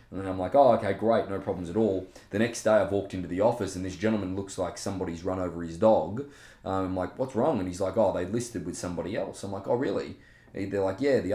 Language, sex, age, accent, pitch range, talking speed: English, male, 20-39, Australian, 90-110 Hz, 265 wpm